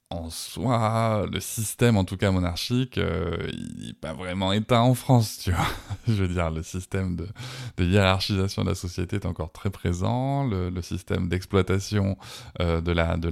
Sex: male